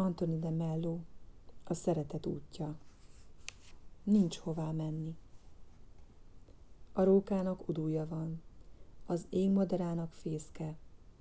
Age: 30-49